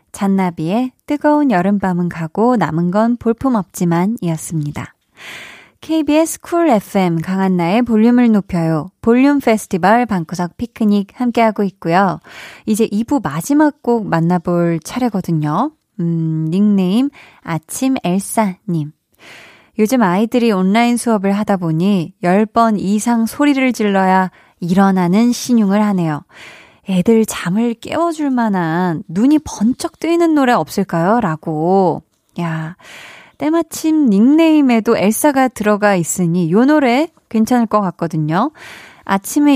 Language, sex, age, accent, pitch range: Korean, female, 20-39, native, 185-260 Hz